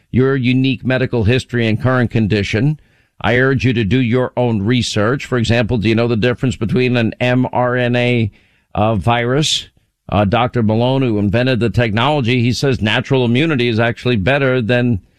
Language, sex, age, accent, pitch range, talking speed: English, male, 50-69, American, 110-135 Hz, 165 wpm